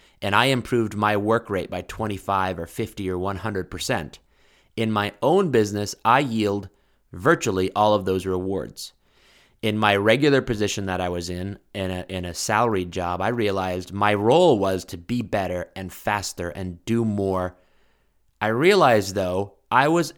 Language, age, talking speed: English, 30-49, 165 wpm